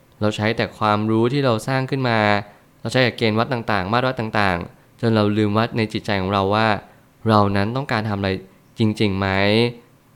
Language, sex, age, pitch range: Thai, male, 20-39, 105-125 Hz